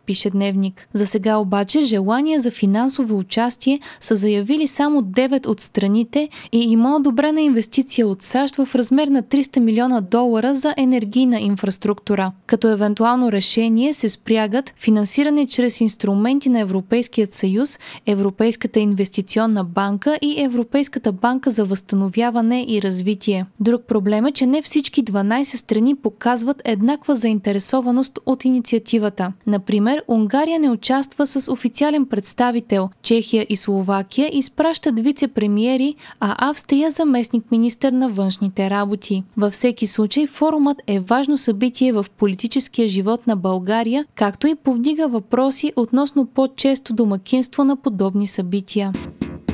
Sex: female